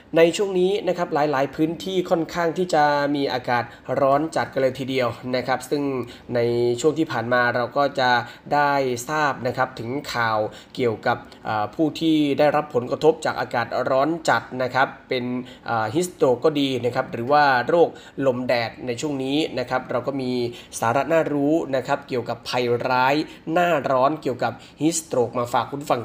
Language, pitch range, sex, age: Thai, 125-155 Hz, male, 20-39